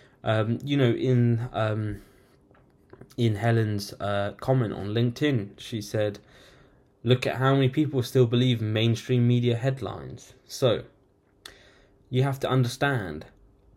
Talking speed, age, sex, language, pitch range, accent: 120 wpm, 10-29, male, English, 110-130 Hz, British